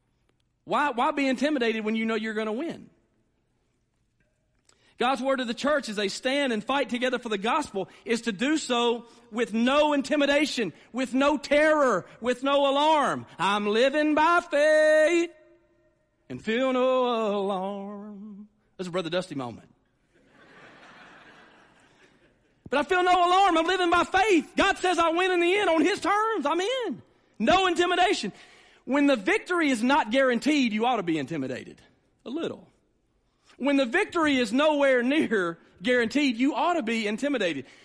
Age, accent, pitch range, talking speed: 40-59, American, 205-305 Hz, 155 wpm